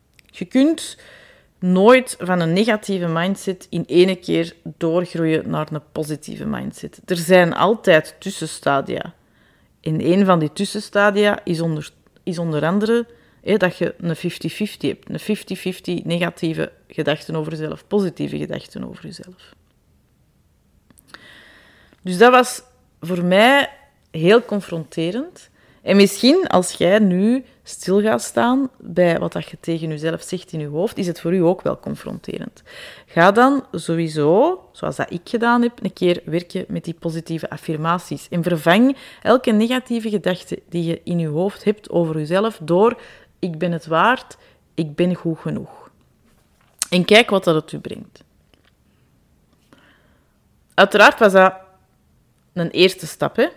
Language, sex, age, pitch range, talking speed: Dutch, female, 30-49, 165-210 Hz, 140 wpm